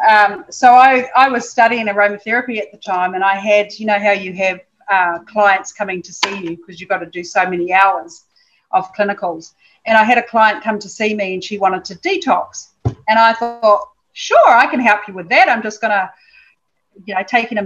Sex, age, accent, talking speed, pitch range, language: female, 40-59, Australian, 220 wpm, 195-230 Hz, English